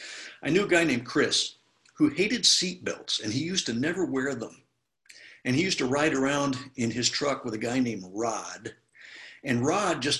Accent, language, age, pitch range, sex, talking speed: American, English, 60-79, 120-165 Hz, male, 200 wpm